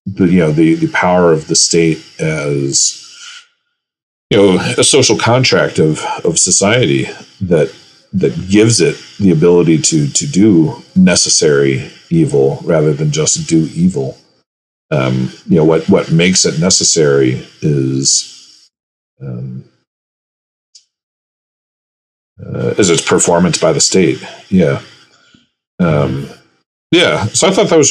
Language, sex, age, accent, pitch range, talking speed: English, male, 40-59, American, 75-110 Hz, 125 wpm